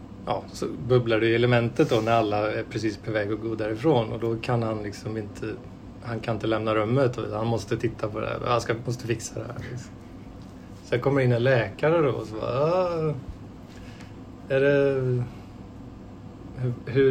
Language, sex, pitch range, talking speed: Swedish, male, 110-130 Hz, 180 wpm